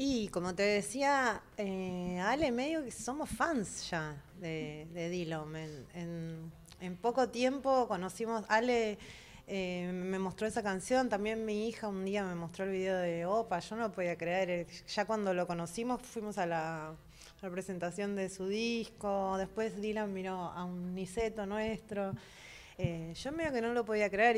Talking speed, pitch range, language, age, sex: 170 wpm, 180-235 Hz, Spanish, 20-39, female